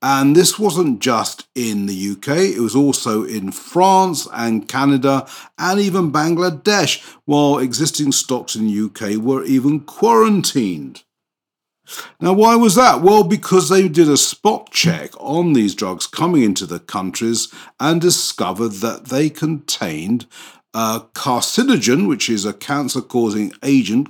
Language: English